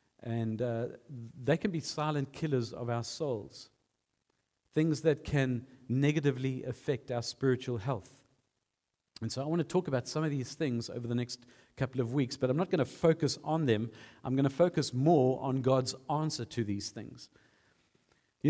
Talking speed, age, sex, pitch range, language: 180 wpm, 50-69, male, 120-145 Hz, English